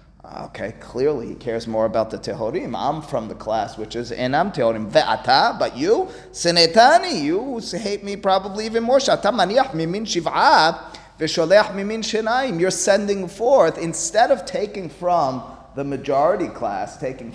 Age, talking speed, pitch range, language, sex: 30-49, 125 wpm, 115-190 Hz, English, male